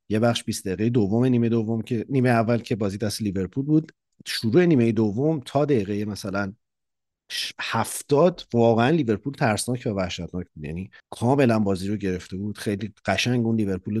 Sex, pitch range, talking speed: male, 95-120 Hz, 160 wpm